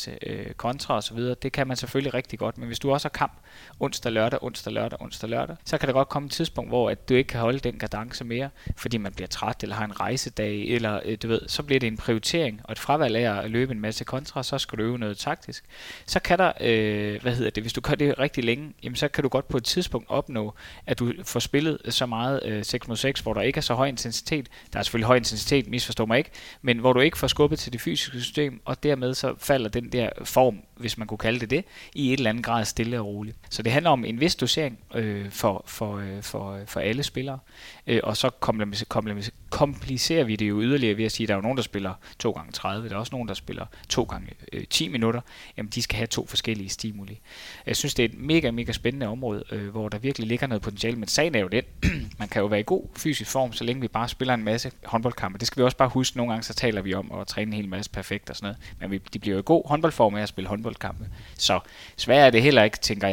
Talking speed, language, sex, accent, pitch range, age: 260 wpm, Danish, male, native, 105-130 Hz, 20-39